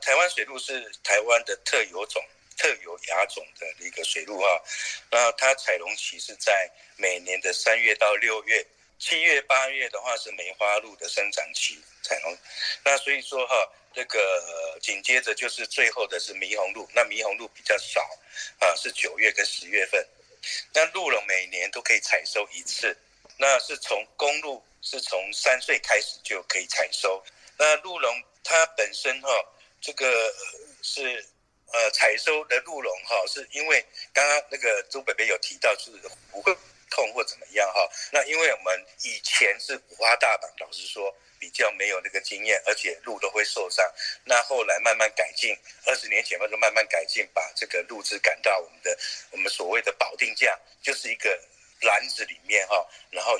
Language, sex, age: Chinese, male, 50-69